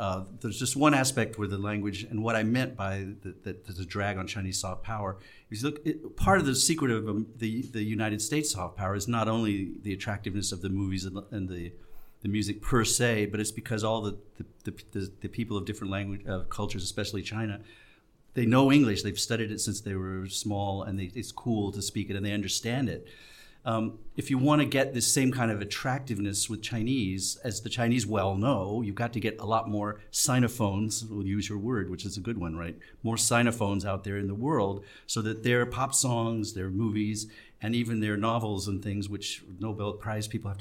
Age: 50-69